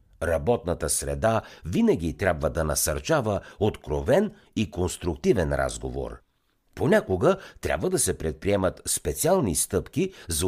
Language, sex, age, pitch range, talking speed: Bulgarian, male, 60-79, 75-115 Hz, 105 wpm